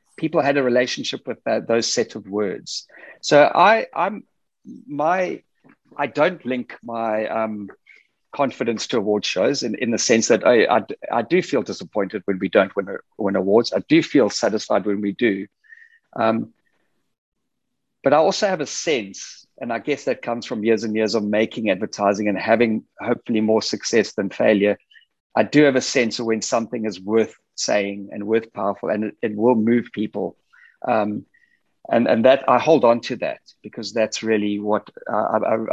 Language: English